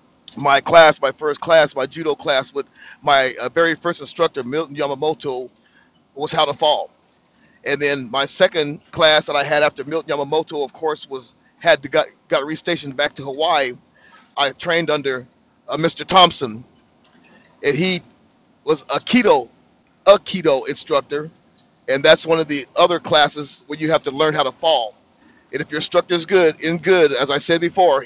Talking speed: 175 wpm